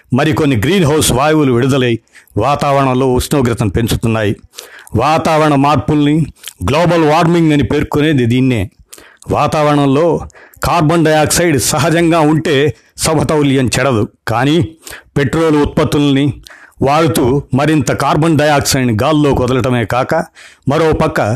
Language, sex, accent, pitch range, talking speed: Telugu, male, native, 125-150 Hz, 95 wpm